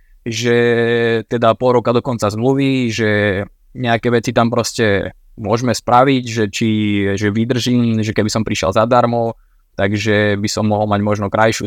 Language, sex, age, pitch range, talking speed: Slovak, male, 20-39, 110-120 Hz, 145 wpm